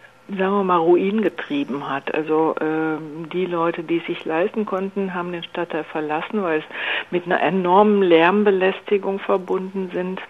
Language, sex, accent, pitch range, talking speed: German, female, German, 175-200 Hz, 155 wpm